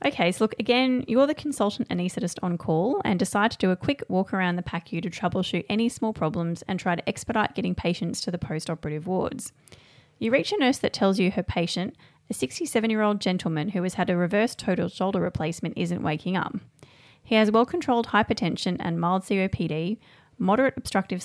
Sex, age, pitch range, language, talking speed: female, 30-49, 170-225 Hz, English, 200 wpm